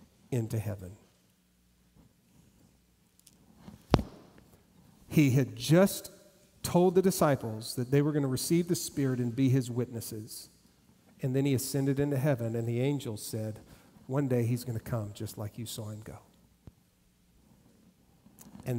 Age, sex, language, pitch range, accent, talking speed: 50-69, male, English, 115-150 Hz, American, 135 wpm